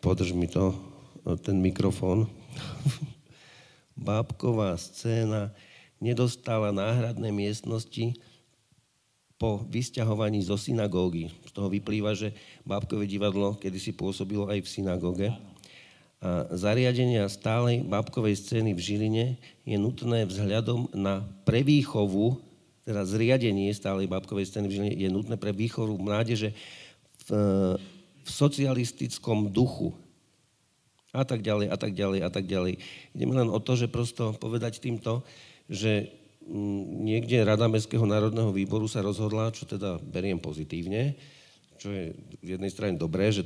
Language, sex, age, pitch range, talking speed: Slovak, male, 50-69, 100-115 Hz, 125 wpm